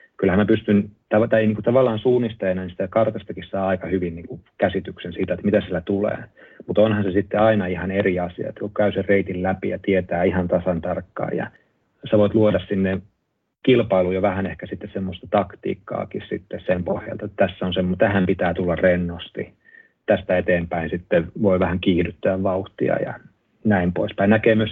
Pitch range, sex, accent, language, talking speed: 95-105 Hz, male, native, Finnish, 170 wpm